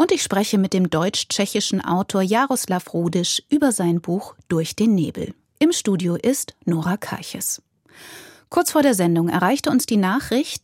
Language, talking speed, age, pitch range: German, 160 wpm, 30-49, 190-260 Hz